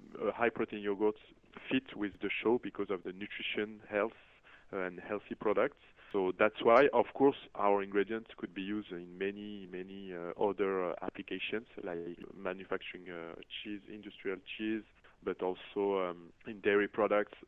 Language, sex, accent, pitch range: English, male, French, 100-125 Hz